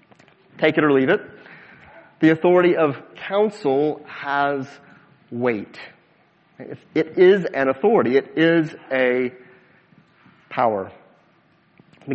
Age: 40-59